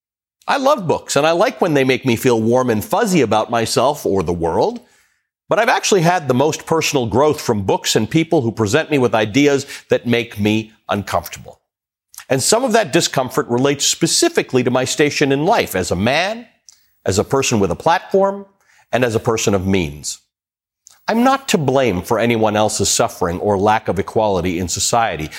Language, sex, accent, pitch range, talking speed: English, male, American, 115-165 Hz, 190 wpm